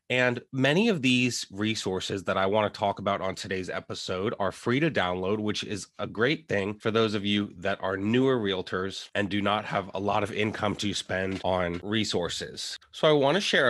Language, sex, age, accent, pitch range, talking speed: English, male, 20-39, American, 100-120 Hz, 200 wpm